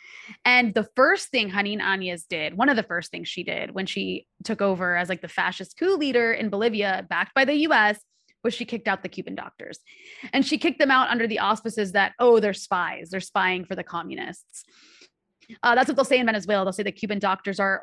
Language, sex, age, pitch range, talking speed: English, female, 20-39, 195-245 Hz, 225 wpm